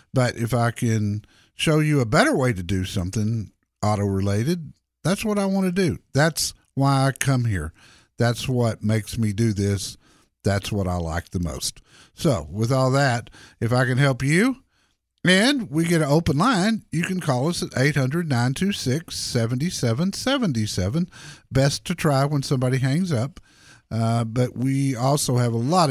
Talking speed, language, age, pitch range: 165 wpm, English, 50-69, 110-165 Hz